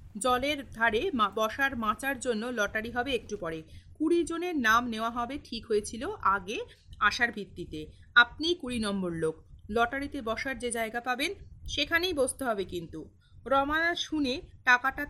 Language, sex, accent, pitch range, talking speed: Bengali, female, native, 210-295 Hz, 130 wpm